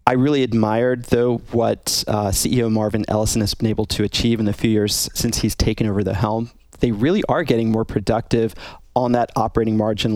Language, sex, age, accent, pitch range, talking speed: English, male, 30-49, American, 110-125 Hz, 200 wpm